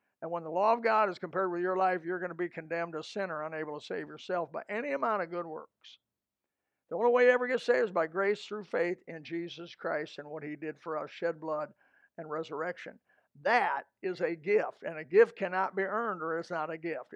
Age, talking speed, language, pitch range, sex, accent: 60-79, 240 wpm, English, 165-210 Hz, male, American